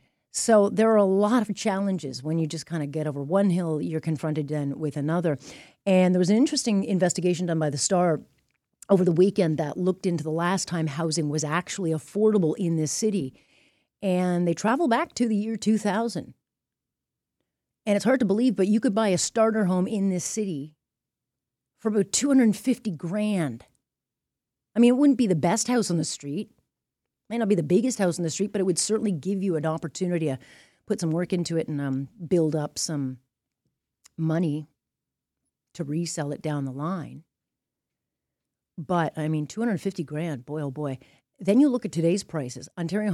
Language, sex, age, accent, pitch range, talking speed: English, female, 40-59, American, 155-200 Hz, 190 wpm